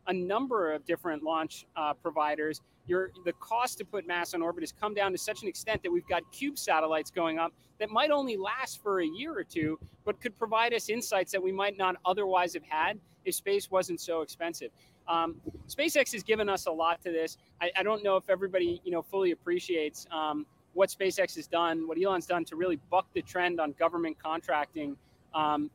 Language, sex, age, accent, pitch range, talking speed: English, male, 30-49, American, 165-215 Hz, 210 wpm